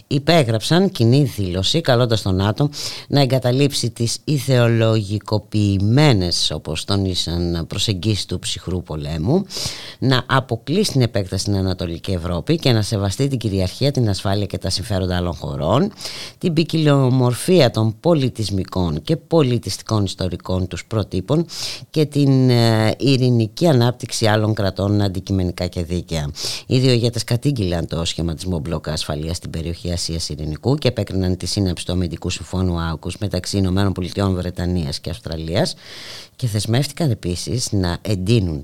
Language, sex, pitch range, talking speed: Greek, female, 90-125 Hz, 125 wpm